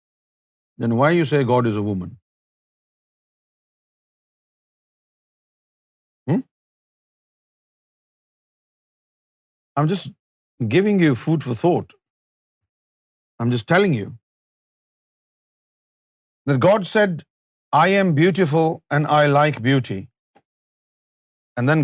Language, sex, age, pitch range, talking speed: Urdu, male, 50-69, 110-165 Hz, 90 wpm